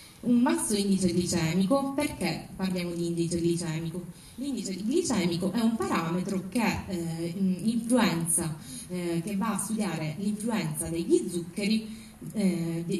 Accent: native